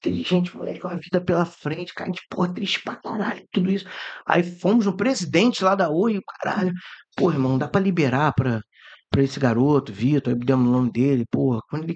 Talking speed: 200 wpm